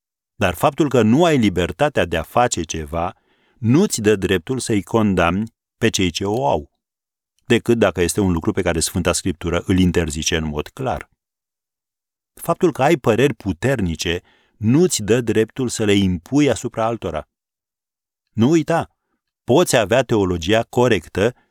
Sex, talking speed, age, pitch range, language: male, 150 wpm, 40-59, 95-120 Hz, Romanian